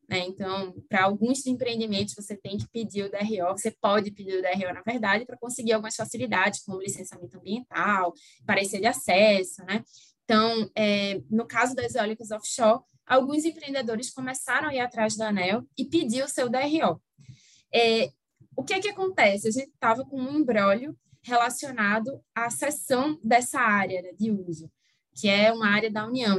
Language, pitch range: Portuguese, 195-240 Hz